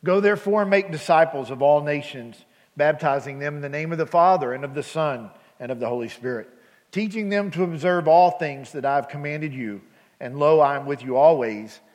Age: 40-59